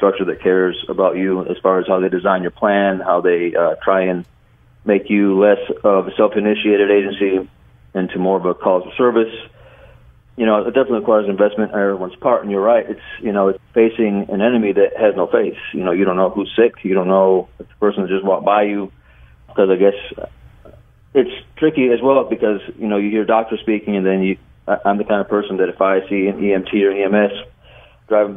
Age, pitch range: 40-59, 95-115 Hz